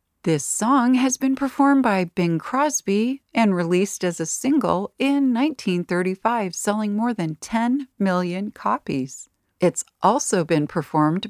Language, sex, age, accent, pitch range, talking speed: English, female, 40-59, American, 165-245 Hz, 135 wpm